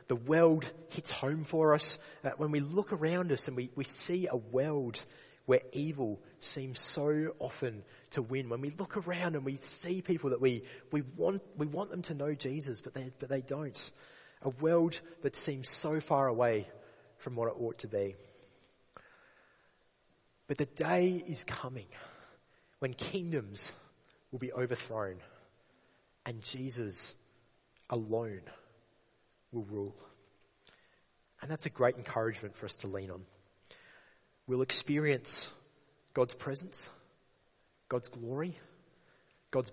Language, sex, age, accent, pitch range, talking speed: English, male, 30-49, Australian, 115-155 Hz, 135 wpm